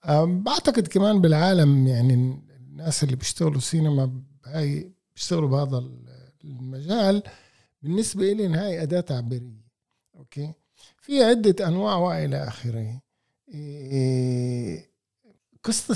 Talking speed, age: 100 wpm, 50-69